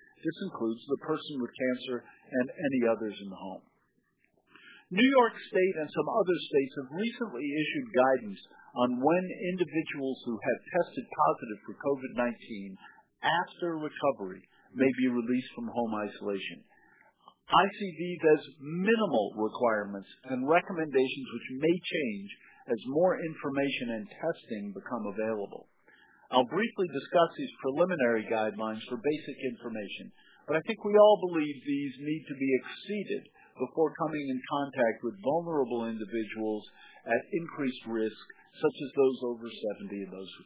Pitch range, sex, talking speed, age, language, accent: 120-175 Hz, male, 140 wpm, 50-69, English, American